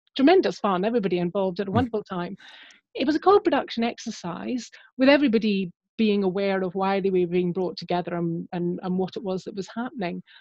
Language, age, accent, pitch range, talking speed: English, 30-49, British, 185-255 Hz, 190 wpm